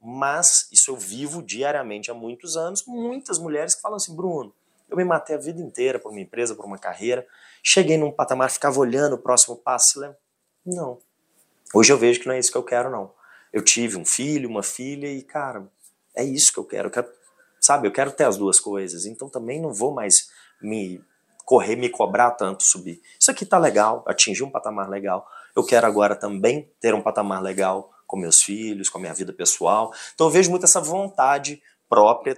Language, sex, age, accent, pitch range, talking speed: Portuguese, male, 30-49, Brazilian, 120-180 Hz, 205 wpm